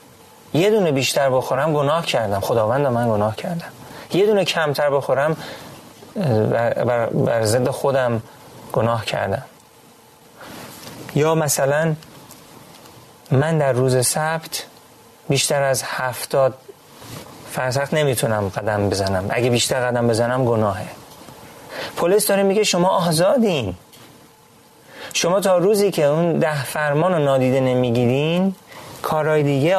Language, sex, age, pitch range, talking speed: Persian, male, 30-49, 125-155 Hz, 105 wpm